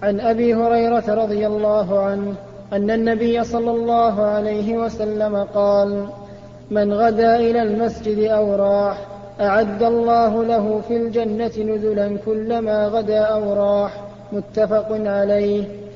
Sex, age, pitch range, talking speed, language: male, 30-49, 205-230 Hz, 115 wpm, Arabic